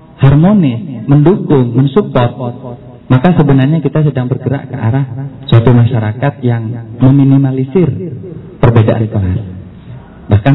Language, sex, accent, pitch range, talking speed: Indonesian, male, native, 110-135 Hz, 95 wpm